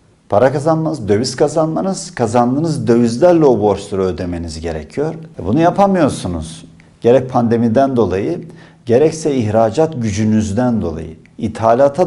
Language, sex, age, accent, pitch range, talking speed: Turkish, male, 50-69, native, 95-150 Hz, 105 wpm